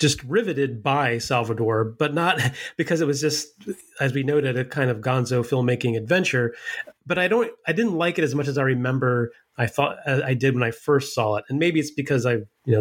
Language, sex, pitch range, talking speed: English, male, 120-150 Hz, 225 wpm